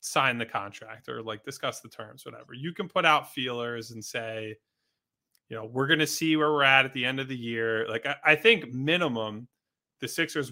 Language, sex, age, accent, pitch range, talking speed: English, male, 20-39, American, 120-150 Hz, 215 wpm